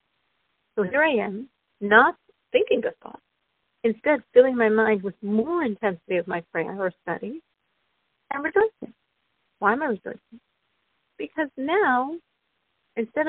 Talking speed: 130 wpm